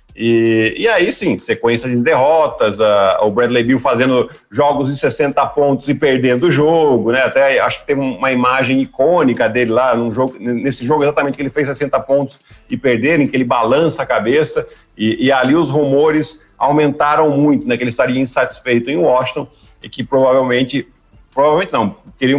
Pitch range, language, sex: 125-155 Hz, Portuguese, male